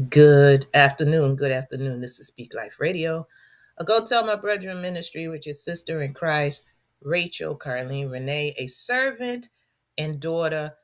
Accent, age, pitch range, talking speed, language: American, 40-59, 130-175 Hz, 150 wpm, English